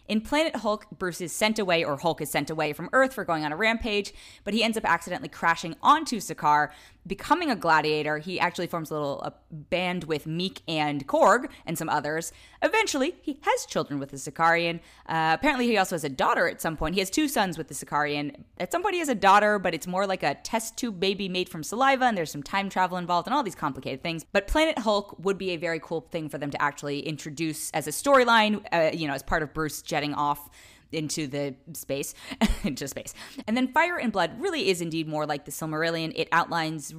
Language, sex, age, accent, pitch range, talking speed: English, female, 20-39, American, 150-210 Hz, 225 wpm